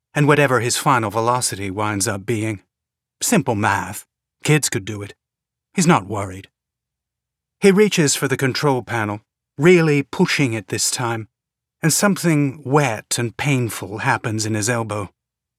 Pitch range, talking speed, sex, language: 110-150 Hz, 140 wpm, male, English